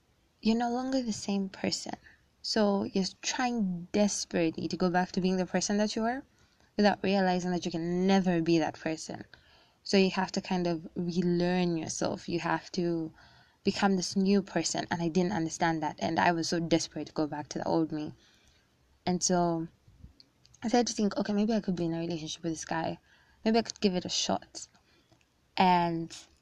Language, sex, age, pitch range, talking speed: English, female, 20-39, 170-215 Hz, 195 wpm